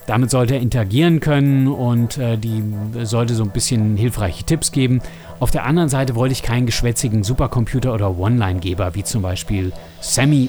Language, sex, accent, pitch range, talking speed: German, male, German, 110-135 Hz, 170 wpm